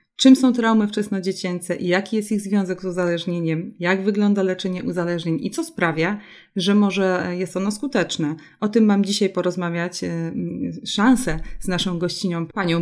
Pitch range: 170-210 Hz